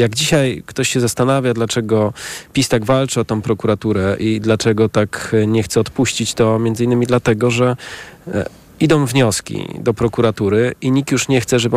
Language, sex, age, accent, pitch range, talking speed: Polish, male, 40-59, native, 110-130 Hz, 170 wpm